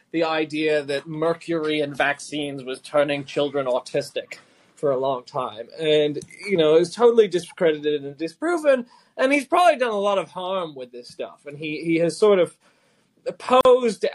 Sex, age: male, 20-39